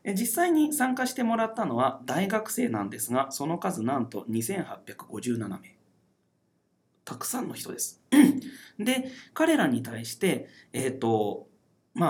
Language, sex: Japanese, male